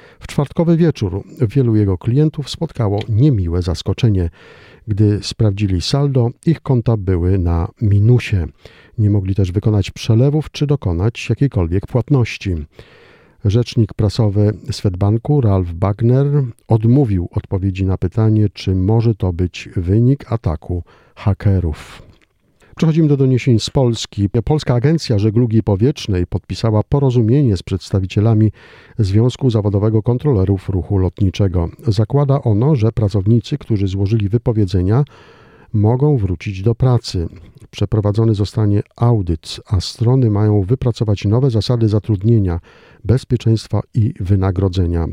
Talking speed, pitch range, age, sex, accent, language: 110 wpm, 100-120 Hz, 50-69, male, native, Polish